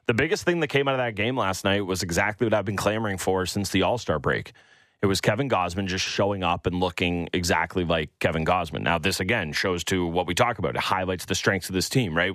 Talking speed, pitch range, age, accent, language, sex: 255 wpm, 90-115 Hz, 30-49, American, English, male